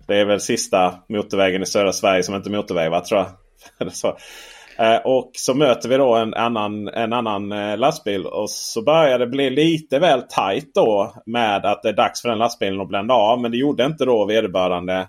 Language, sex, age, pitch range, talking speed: Swedish, male, 30-49, 110-155 Hz, 215 wpm